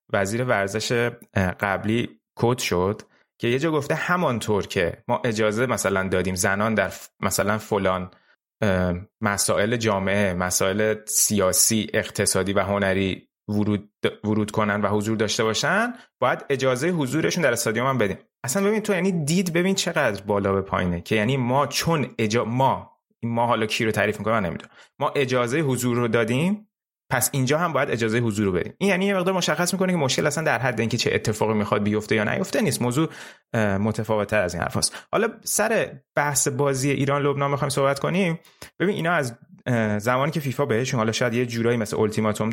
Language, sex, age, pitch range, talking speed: Persian, male, 30-49, 105-150 Hz, 170 wpm